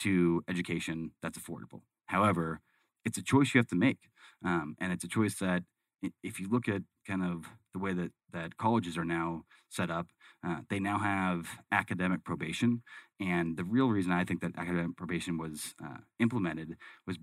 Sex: male